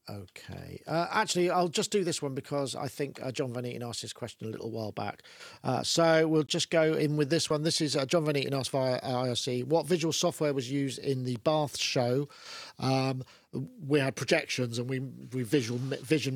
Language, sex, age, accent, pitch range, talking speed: English, male, 50-69, British, 125-155 Hz, 215 wpm